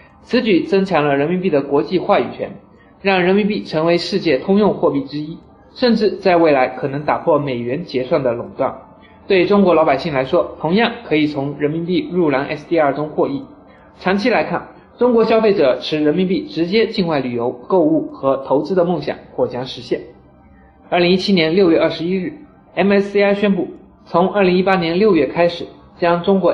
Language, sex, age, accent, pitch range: Chinese, male, 20-39, native, 145-195 Hz